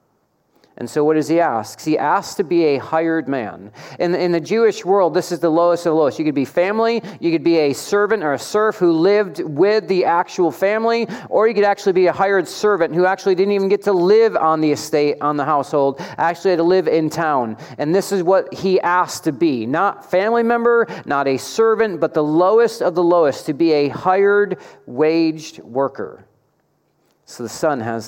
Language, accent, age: English, American, 40-59